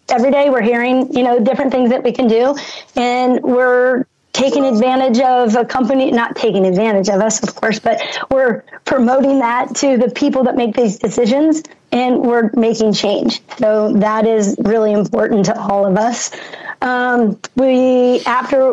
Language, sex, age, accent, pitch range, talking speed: English, female, 30-49, American, 215-255 Hz, 170 wpm